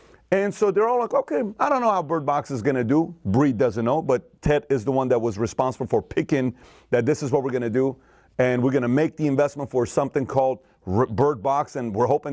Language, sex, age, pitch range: English, male, 40-59, 125-180 Hz